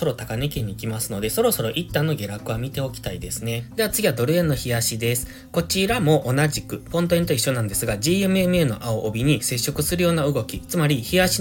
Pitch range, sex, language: 115-170 Hz, male, Japanese